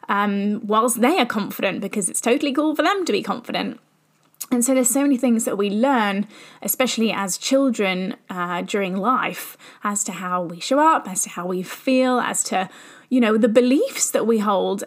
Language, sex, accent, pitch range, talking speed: English, female, British, 205-250 Hz, 200 wpm